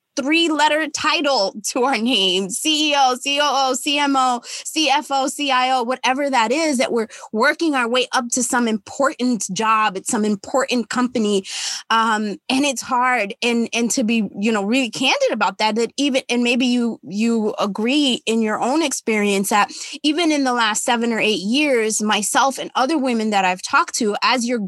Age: 20-39